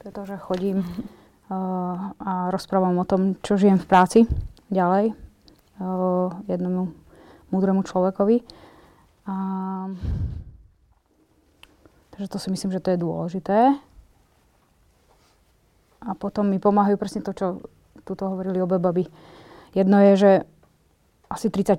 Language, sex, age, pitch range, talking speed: Slovak, female, 20-39, 185-205 Hz, 115 wpm